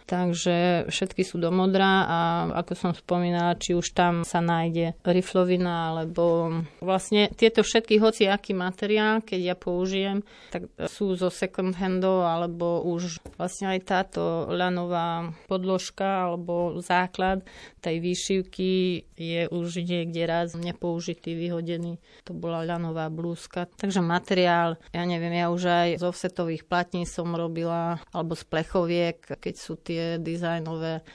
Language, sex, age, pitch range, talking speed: Slovak, female, 30-49, 170-185 Hz, 135 wpm